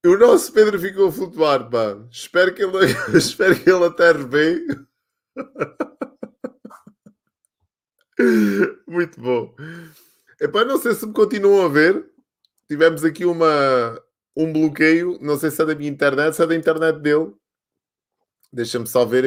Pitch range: 140-215 Hz